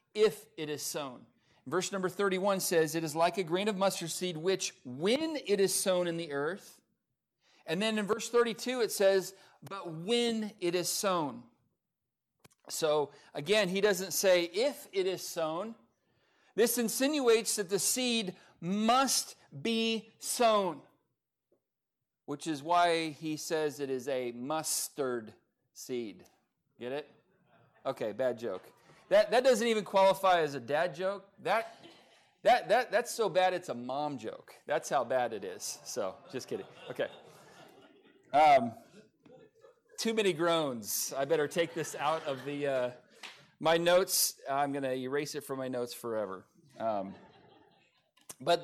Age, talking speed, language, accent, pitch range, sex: 40-59, 150 wpm, English, American, 155-215 Hz, male